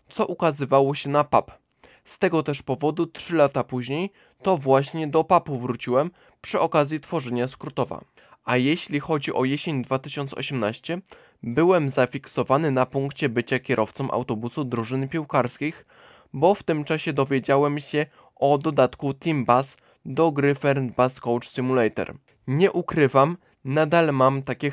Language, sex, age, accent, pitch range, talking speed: Polish, male, 20-39, native, 130-155 Hz, 135 wpm